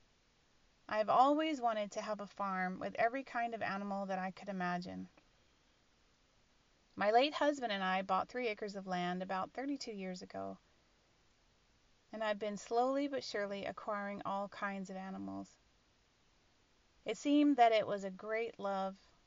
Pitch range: 195-240 Hz